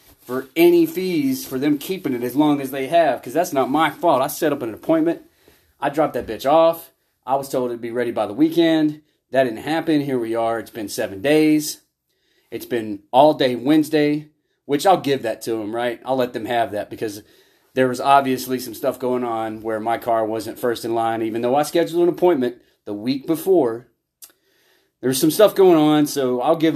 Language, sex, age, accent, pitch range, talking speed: English, male, 30-49, American, 120-160 Hz, 215 wpm